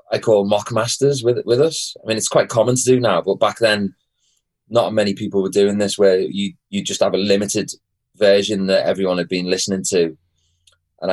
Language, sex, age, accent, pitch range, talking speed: English, male, 20-39, British, 95-120 Hz, 210 wpm